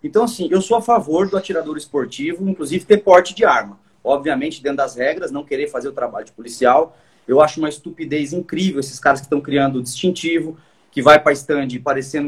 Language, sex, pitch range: Portuguese, male, 145-195 Hz